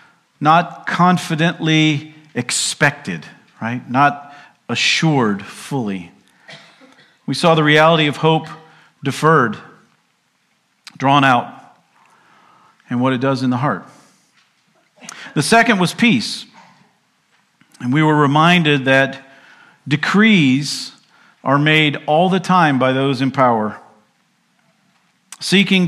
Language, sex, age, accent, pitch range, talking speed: English, male, 50-69, American, 135-180 Hz, 100 wpm